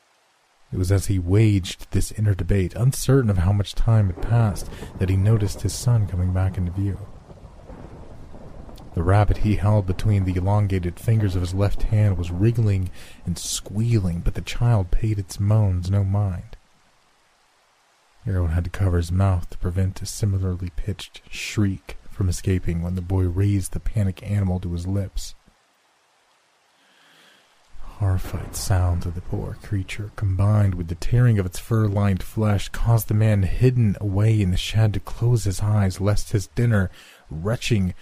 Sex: male